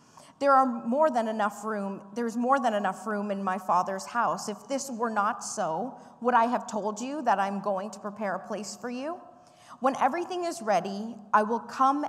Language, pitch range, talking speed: English, 195-250 Hz, 190 wpm